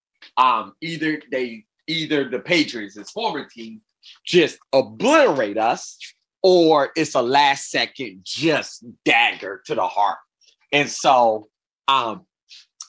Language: English